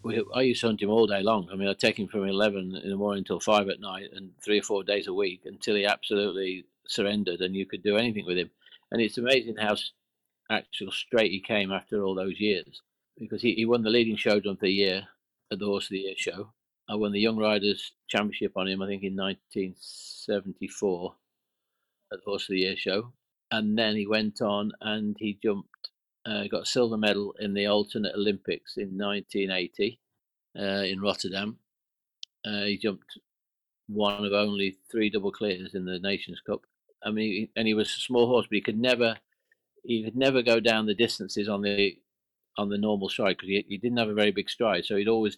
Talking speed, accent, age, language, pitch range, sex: 210 wpm, British, 50-69, English, 100-110 Hz, male